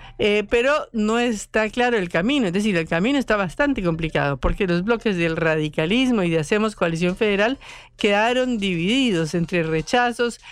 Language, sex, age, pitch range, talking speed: Spanish, female, 50-69, 180-235 Hz, 160 wpm